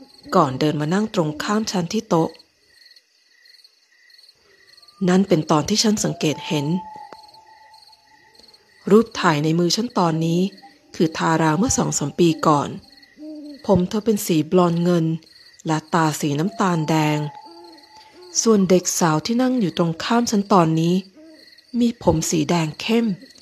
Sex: female